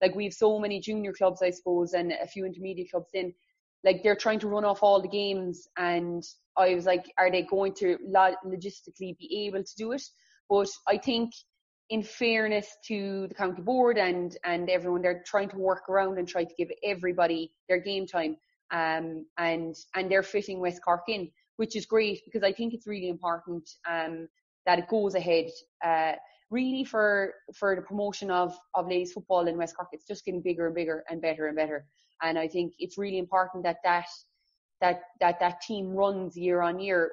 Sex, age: female, 20-39